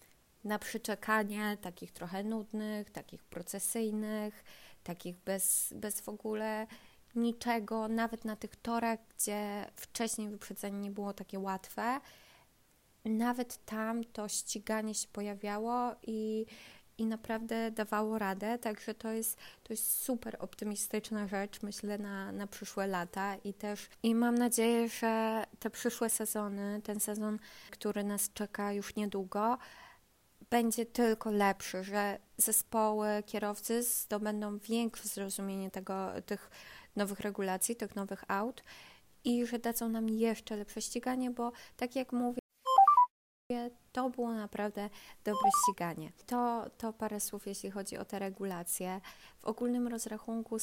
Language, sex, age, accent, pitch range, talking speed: Polish, female, 20-39, native, 205-230 Hz, 125 wpm